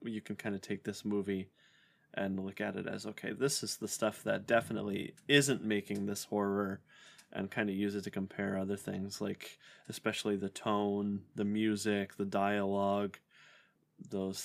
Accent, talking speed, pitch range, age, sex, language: American, 170 wpm, 100-120 Hz, 20-39, male, English